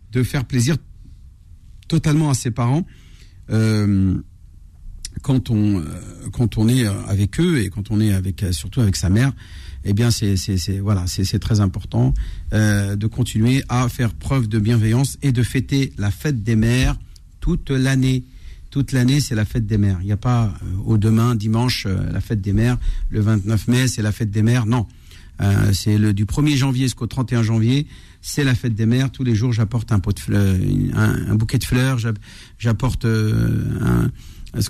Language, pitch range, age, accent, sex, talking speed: French, 100-125 Hz, 50-69, French, male, 185 wpm